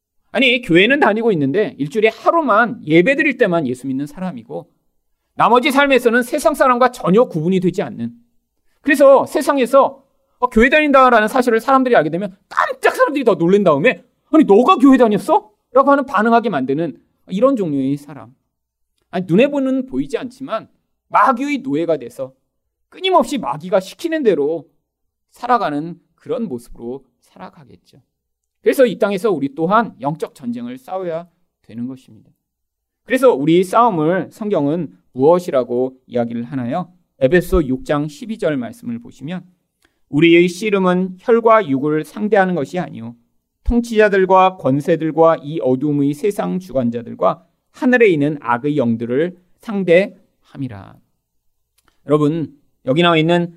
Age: 40-59